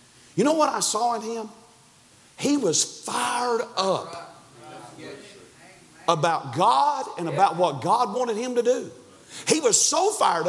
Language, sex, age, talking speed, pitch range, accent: English, male, 40-59, 145 wpm, 280-345 Hz, American